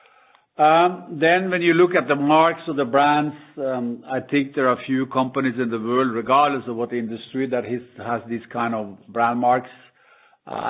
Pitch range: 115-135 Hz